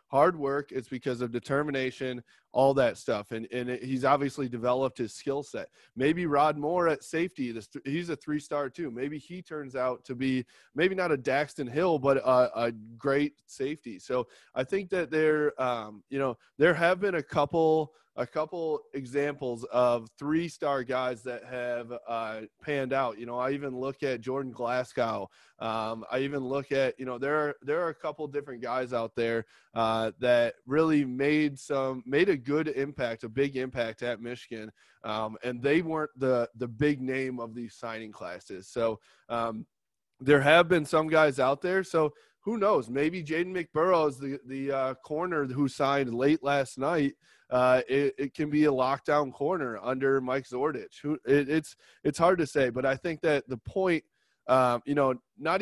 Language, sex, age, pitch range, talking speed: English, male, 20-39, 125-150 Hz, 185 wpm